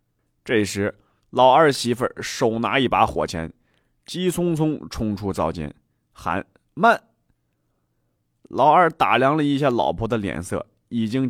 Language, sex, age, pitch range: Chinese, male, 30-49, 90-150 Hz